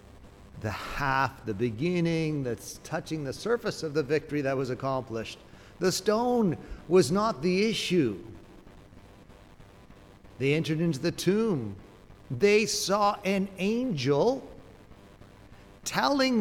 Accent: American